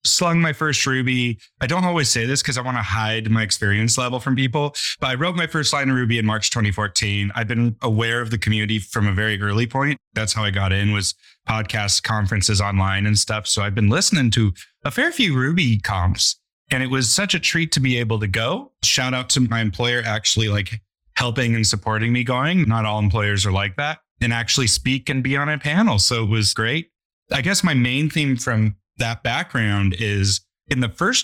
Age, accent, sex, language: 30-49, American, male, English